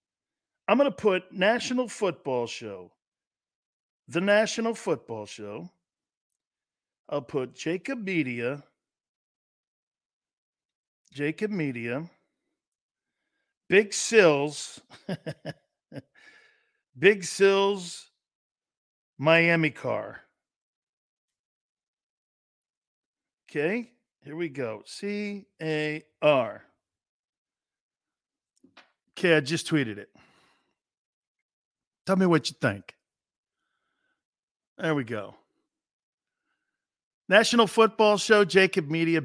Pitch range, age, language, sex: 145-220 Hz, 50-69, English, male